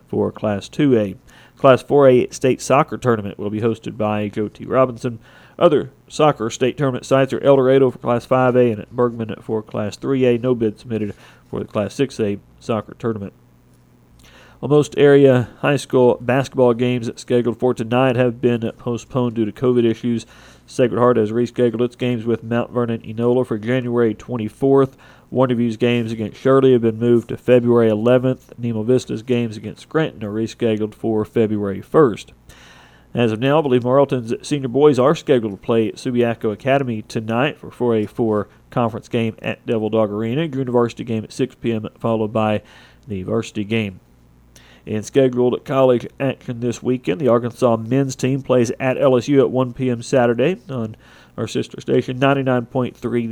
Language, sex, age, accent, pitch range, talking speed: English, male, 40-59, American, 110-130 Hz, 170 wpm